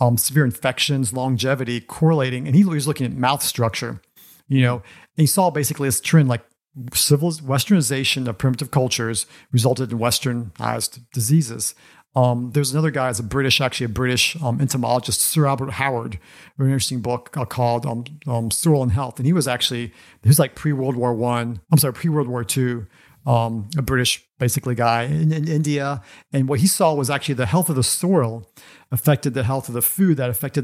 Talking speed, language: 190 wpm, English